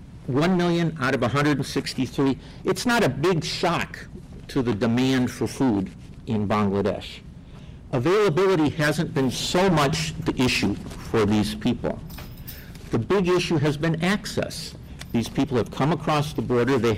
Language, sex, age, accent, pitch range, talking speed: English, male, 60-79, American, 125-165 Hz, 145 wpm